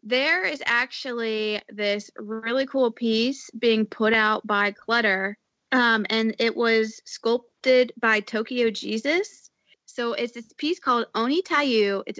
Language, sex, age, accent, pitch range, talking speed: English, female, 20-39, American, 215-255 Hz, 140 wpm